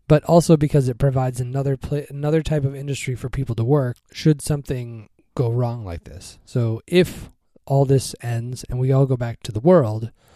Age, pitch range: 20-39, 120-155 Hz